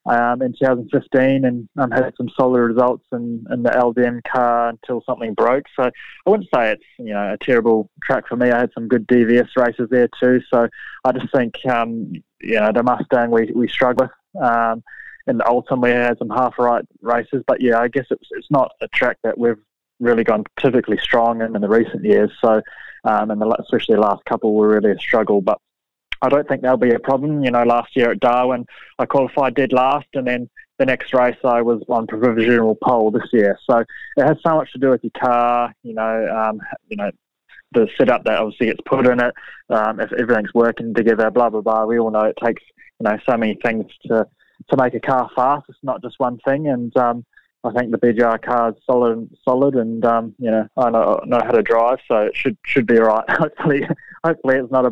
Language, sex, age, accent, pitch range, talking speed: English, male, 20-39, Australian, 115-130 Hz, 225 wpm